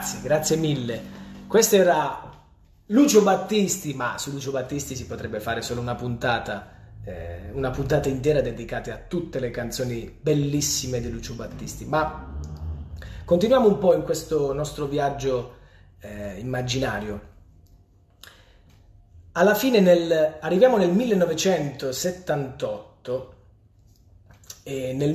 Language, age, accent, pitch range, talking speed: Italian, 30-49, native, 105-170 Hz, 110 wpm